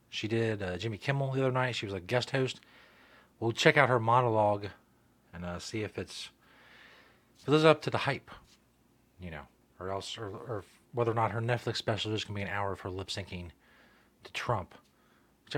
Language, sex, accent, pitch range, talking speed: English, male, American, 105-135 Hz, 210 wpm